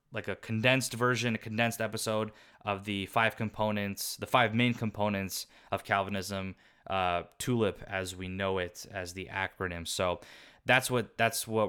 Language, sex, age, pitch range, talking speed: English, male, 20-39, 100-115 Hz, 160 wpm